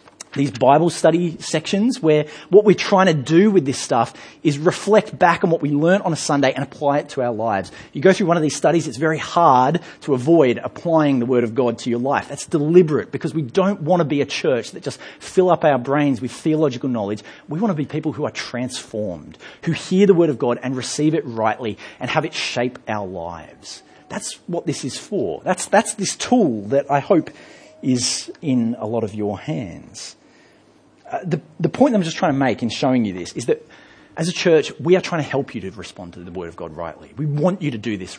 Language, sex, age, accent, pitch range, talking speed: English, male, 30-49, Australian, 120-170 Hz, 235 wpm